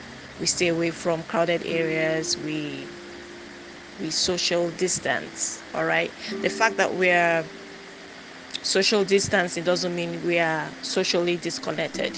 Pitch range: 170-225 Hz